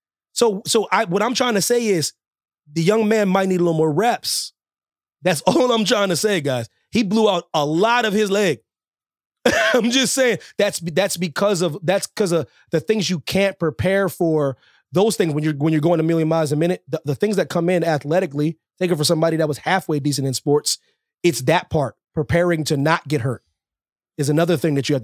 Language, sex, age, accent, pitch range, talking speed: English, male, 30-49, American, 150-210 Hz, 220 wpm